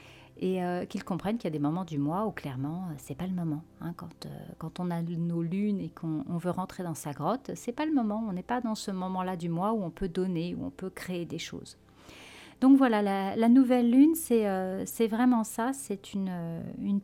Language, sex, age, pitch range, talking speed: French, female, 40-59, 180-225 Hz, 255 wpm